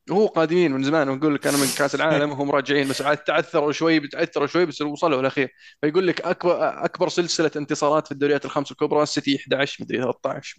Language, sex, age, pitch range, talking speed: Arabic, male, 20-39, 130-155 Hz, 200 wpm